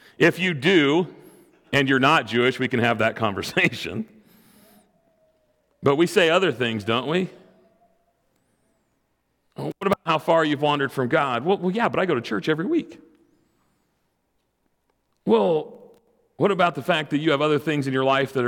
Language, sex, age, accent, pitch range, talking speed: English, male, 40-59, American, 130-175 Hz, 160 wpm